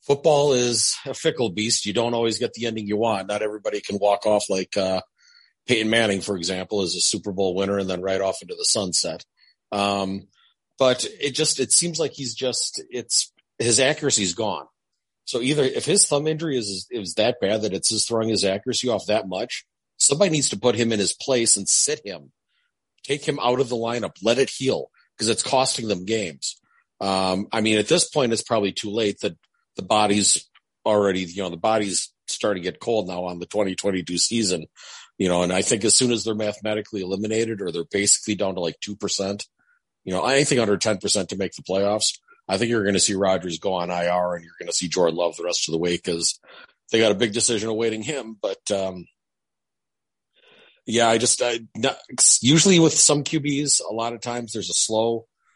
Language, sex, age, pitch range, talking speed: English, male, 40-59, 100-120 Hz, 210 wpm